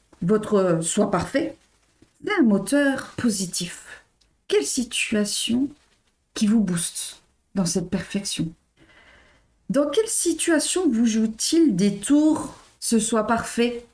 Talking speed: 110 wpm